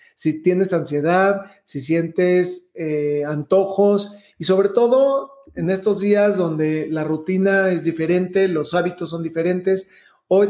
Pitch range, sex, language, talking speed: 170-205 Hz, male, Spanish, 130 wpm